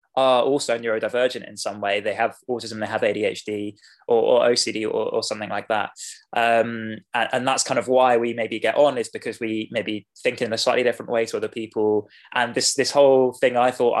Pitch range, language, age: 110-130 Hz, English, 20-39